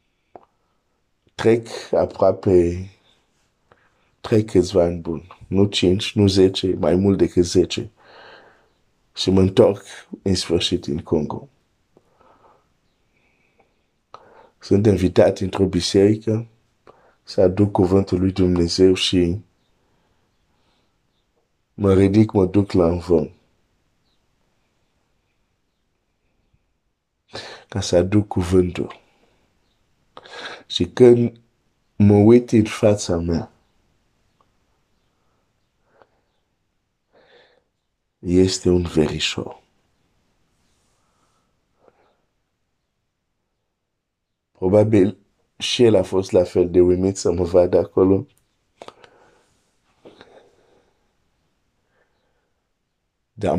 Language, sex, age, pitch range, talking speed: Romanian, male, 50-69, 90-105 Hz, 75 wpm